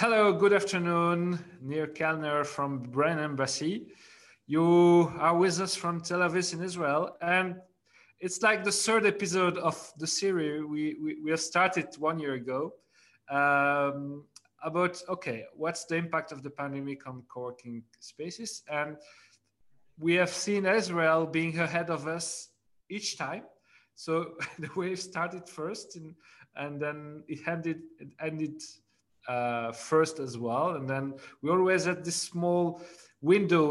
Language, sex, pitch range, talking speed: English, male, 140-175 Hz, 145 wpm